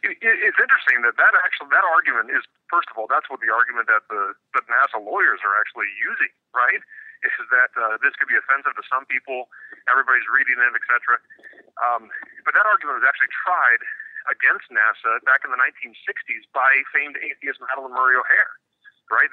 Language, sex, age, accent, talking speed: English, male, 40-59, American, 185 wpm